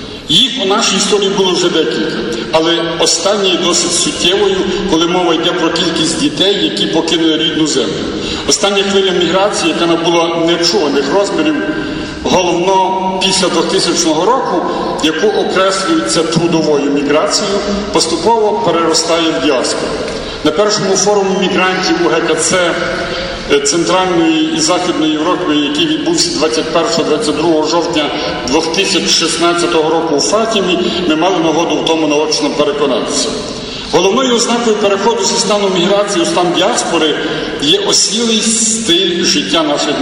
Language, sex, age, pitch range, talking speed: Ukrainian, male, 50-69, 160-205 Hz, 115 wpm